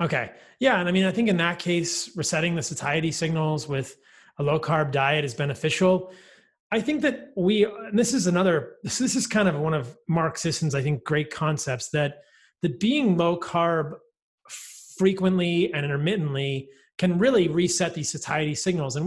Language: English